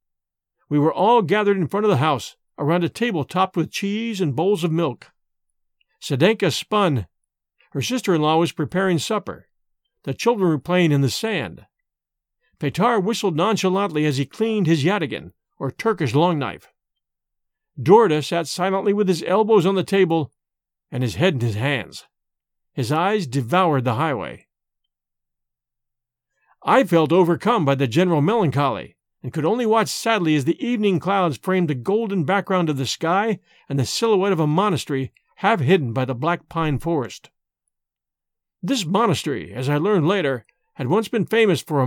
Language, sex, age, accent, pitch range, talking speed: English, male, 50-69, American, 140-200 Hz, 160 wpm